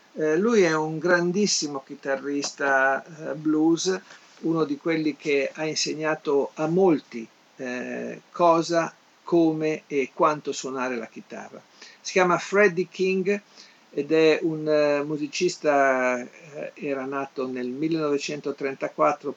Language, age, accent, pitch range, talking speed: Italian, 50-69, native, 130-160 Hz, 100 wpm